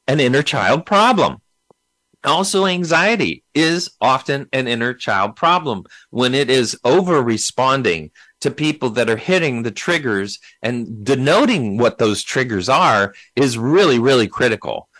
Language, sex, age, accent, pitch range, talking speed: English, male, 40-59, American, 120-160 Hz, 135 wpm